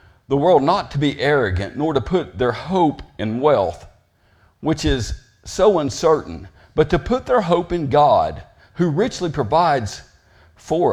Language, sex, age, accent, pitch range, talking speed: English, male, 50-69, American, 100-145 Hz, 155 wpm